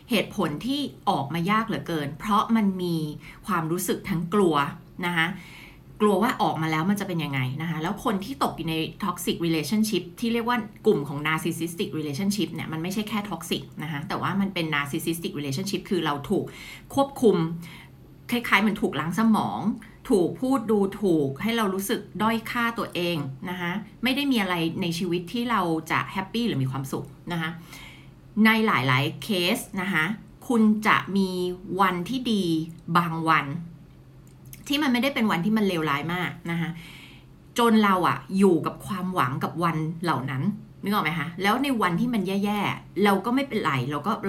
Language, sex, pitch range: Thai, female, 160-210 Hz